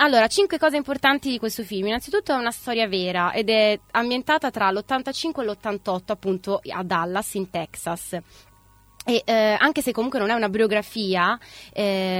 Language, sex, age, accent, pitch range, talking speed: Italian, female, 20-39, native, 190-230 Hz, 165 wpm